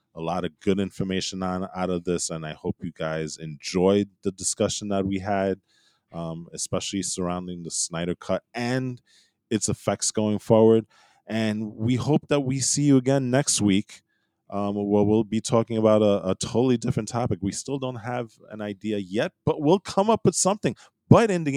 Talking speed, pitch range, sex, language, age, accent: 185 wpm, 95-125 Hz, male, English, 20-39, American